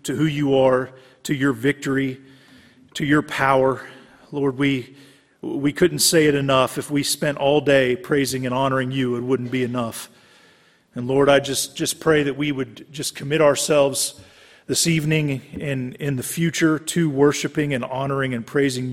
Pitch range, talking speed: 130-145 Hz, 170 wpm